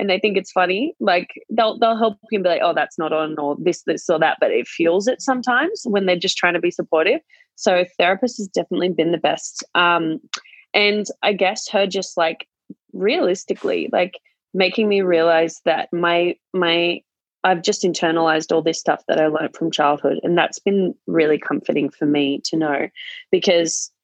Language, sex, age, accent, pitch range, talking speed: English, female, 20-39, Australian, 160-205 Hz, 190 wpm